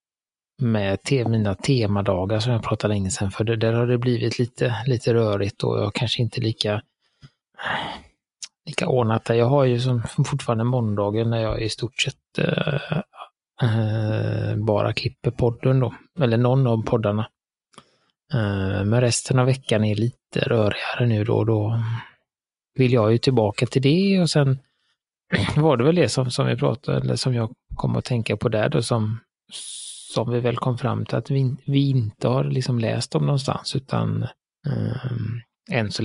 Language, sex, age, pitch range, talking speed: Swedish, male, 20-39, 110-130 Hz, 175 wpm